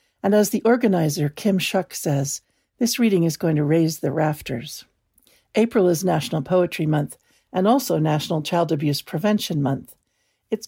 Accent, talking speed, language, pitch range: American, 155 wpm, English, 150-210 Hz